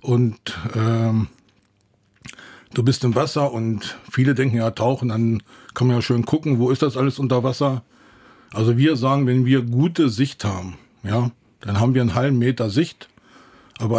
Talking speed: 170 wpm